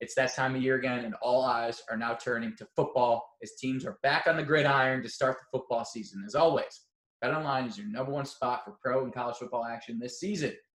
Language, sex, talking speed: English, male, 235 wpm